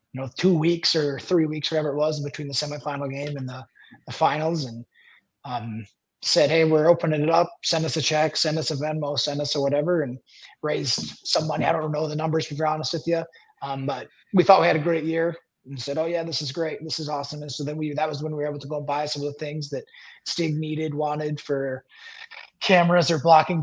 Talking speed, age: 245 wpm, 30-49